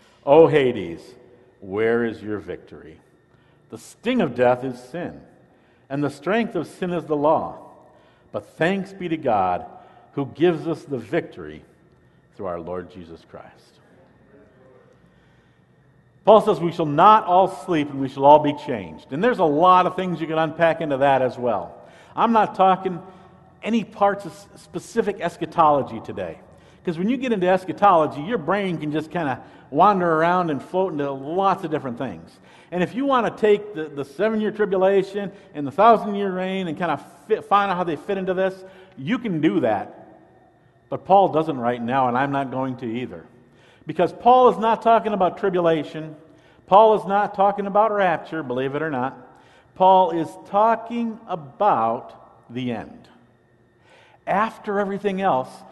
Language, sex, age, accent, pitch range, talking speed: English, male, 50-69, American, 140-200 Hz, 170 wpm